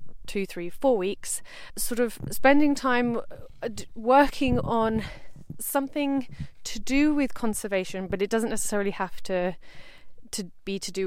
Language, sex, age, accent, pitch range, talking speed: English, female, 30-49, British, 190-240 Hz, 135 wpm